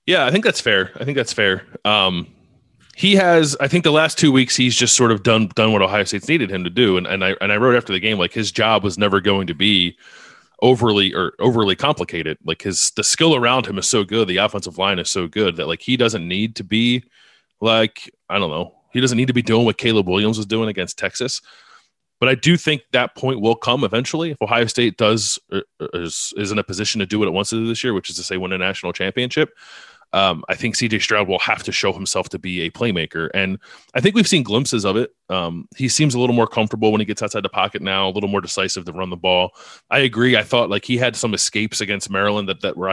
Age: 20-39